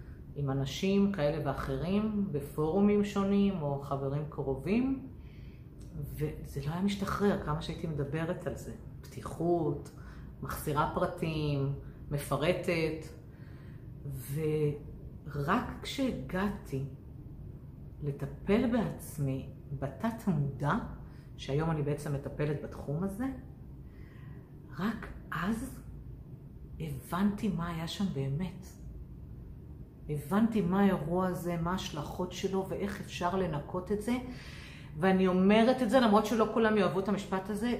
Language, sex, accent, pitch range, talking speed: Hebrew, female, native, 140-200 Hz, 100 wpm